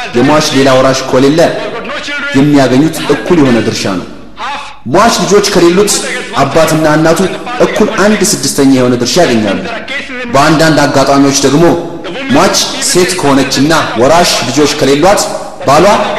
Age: 30-49